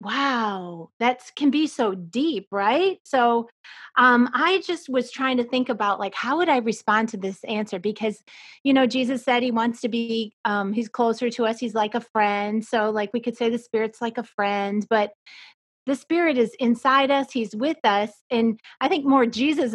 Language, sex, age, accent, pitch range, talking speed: English, female, 30-49, American, 210-250 Hz, 200 wpm